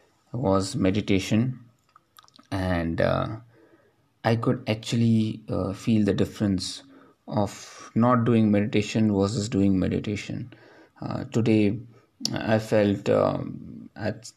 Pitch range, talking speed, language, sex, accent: 95-115 Hz, 100 wpm, English, male, Indian